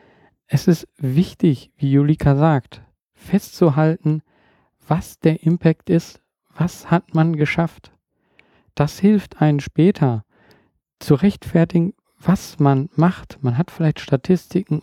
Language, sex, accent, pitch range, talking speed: German, male, German, 140-175 Hz, 115 wpm